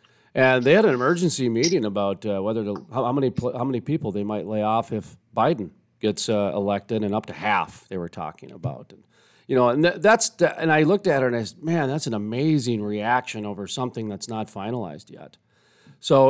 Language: English